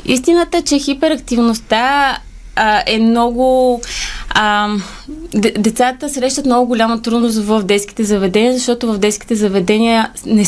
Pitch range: 215-245 Hz